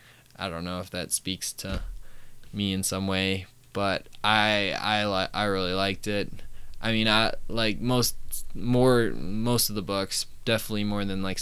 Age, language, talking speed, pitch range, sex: 20-39, English, 175 wpm, 100-120 Hz, male